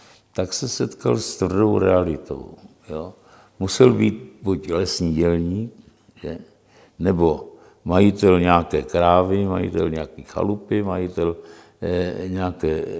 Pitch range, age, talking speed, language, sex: 90-115 Hz, 60-79, 100 wpm, Czech, male